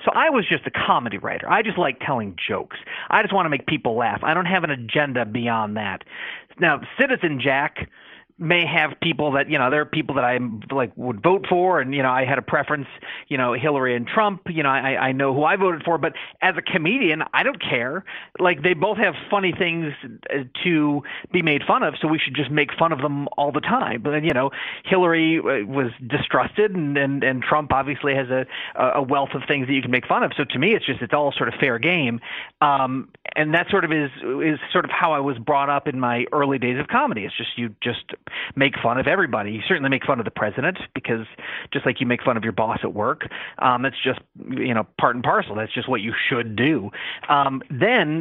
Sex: male